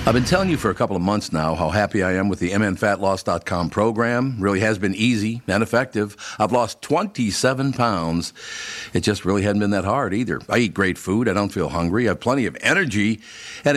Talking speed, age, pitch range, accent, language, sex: 220 wpm, 50-69, 95-125 Hz, American, English, male